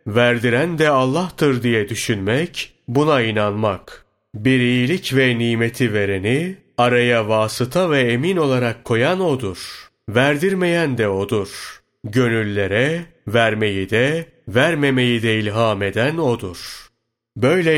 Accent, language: native, Turkish